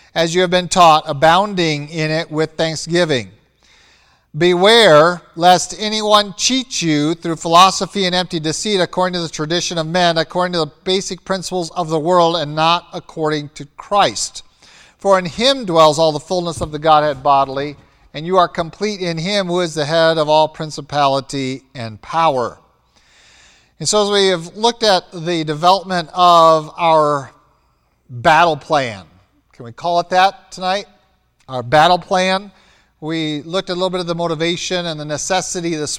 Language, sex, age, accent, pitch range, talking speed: English, male, 50-69, American, 150-180 Hz, 165 wpm